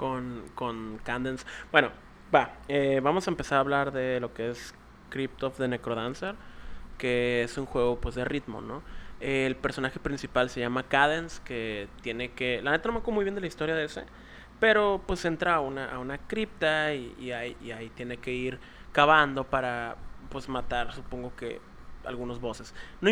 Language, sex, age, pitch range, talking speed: Spanish, male, 20-39, 120-150 Hz, 190 wpm